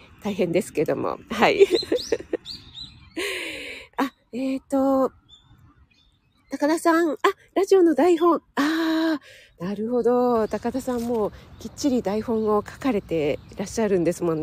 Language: Japanese